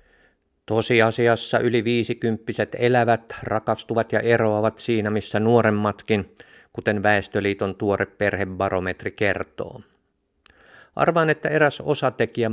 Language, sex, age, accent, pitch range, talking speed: Finnish, male, 50-69, native, 100-120 Hz, 90 wpm